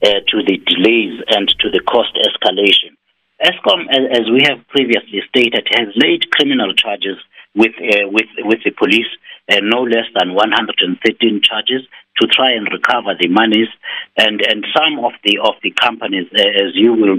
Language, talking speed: English, 170 wpm